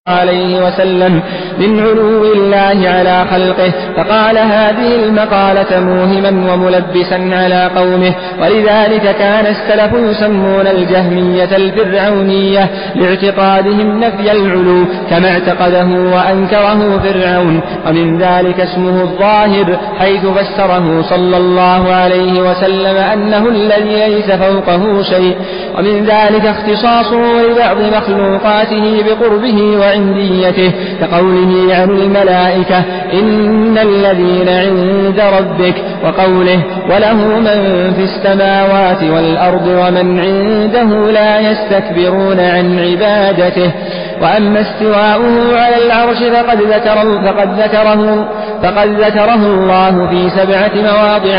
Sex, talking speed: male, 95 wpm